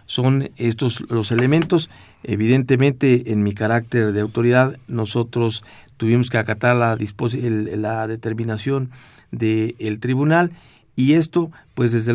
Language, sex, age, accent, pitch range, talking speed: Spanish, male, 50-69, Mexican, 110-125 Hz, 130 wpm